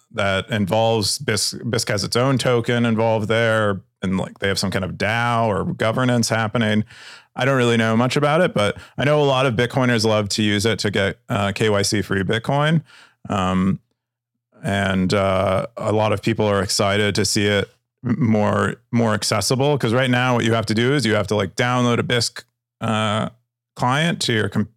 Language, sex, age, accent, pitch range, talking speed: English, male, 30-49, American, 100-120 Hz, 195 wpm